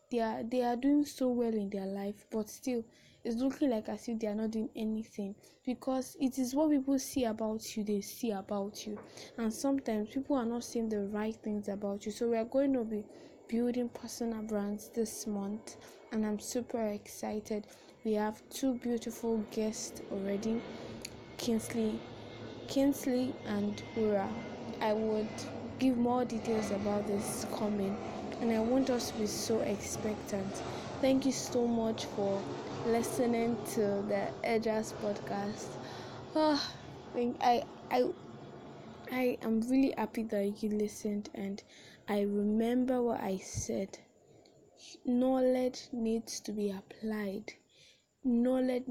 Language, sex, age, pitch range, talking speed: English, female, 20-39, 210-240 Hz, 145 wpm